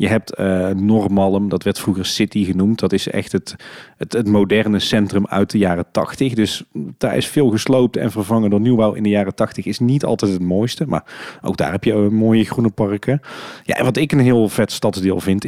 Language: Dutch